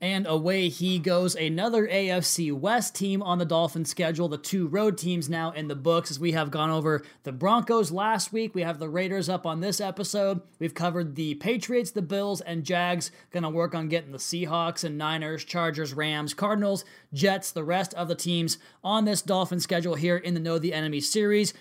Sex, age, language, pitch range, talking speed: male, 20-39, English, 165-200 Hz, 205 wpm